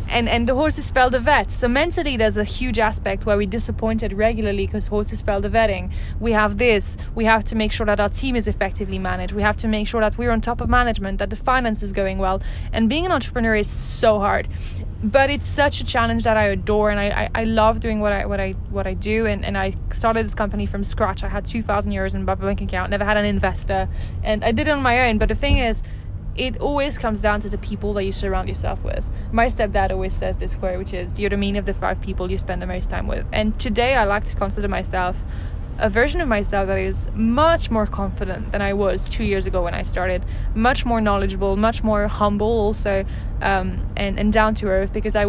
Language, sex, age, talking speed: English, female, 20-39, 245 wpm